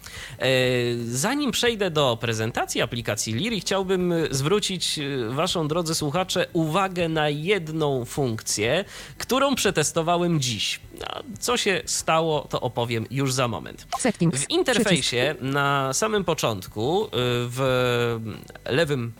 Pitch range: 120-170 Hz